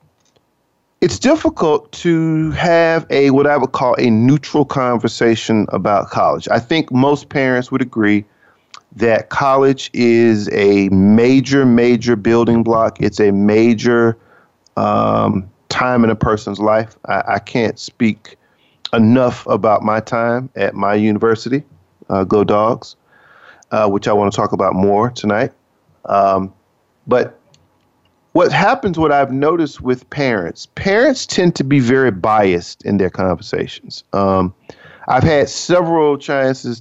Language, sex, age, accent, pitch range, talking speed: English, male, 40-59, American, 110-155 Hz, 135 wpm